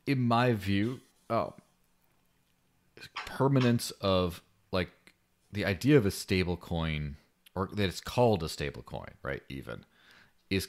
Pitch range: 75-95 Hz